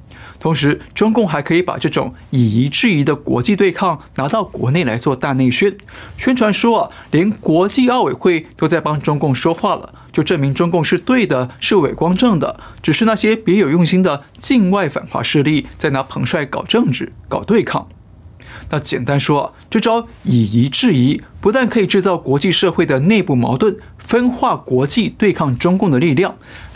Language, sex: Chinese, male